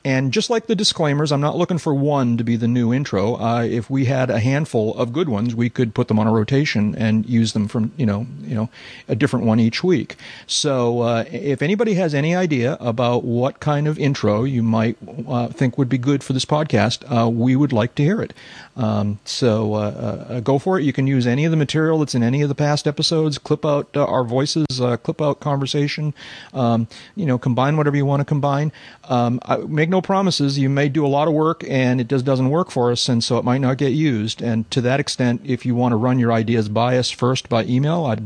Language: English